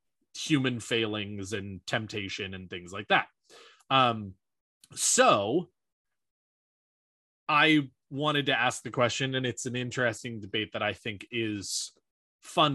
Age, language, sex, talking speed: 20-39, English, male, 120 wpm